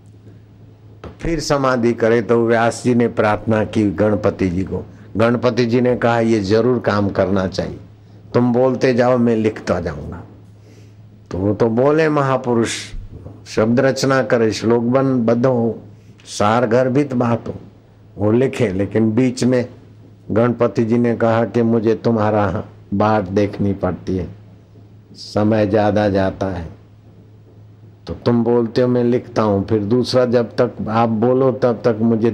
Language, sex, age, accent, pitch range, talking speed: Hindi, male, 60-79, native, 105-125 Hz, 145 wpm